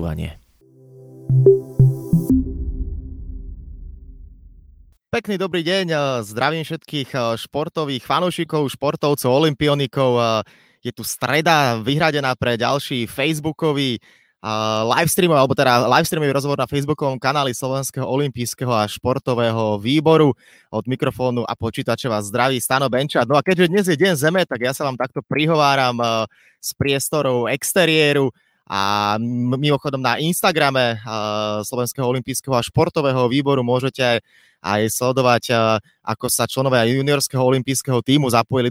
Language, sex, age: Slovak, male, 20-39